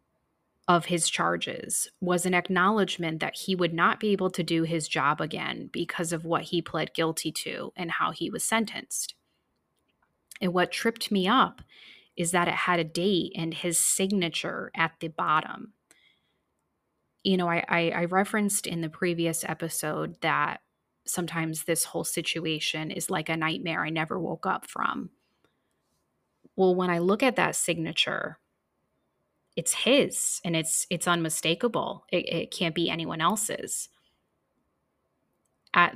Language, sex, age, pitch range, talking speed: English, female, 20-39, 165-190 Hz, 150 wpm